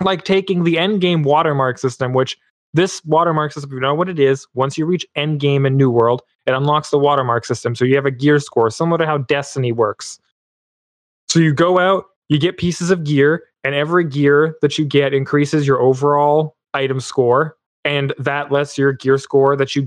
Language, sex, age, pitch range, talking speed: English, male, 20-39, 140-175 Hz, 210 wpm